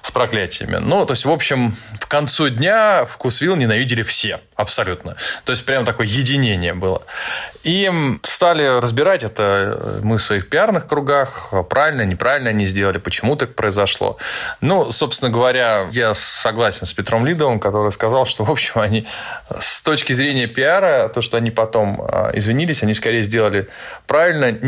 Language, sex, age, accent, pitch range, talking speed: Russian, male, 20-39, native, 110-145 Hz, 155 wpm